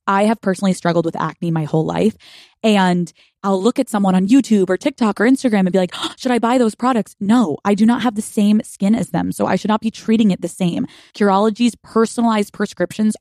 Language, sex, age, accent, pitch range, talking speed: English, female, 20-39, American, 175-220 Hz, 225 wpm